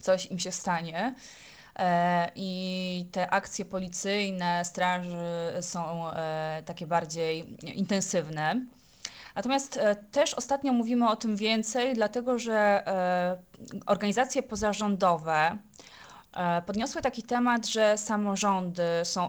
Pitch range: 180-220 Hz